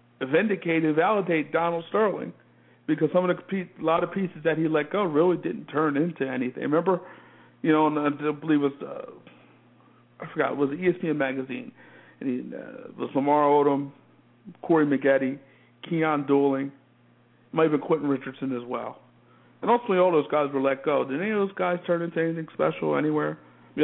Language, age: English, 50-69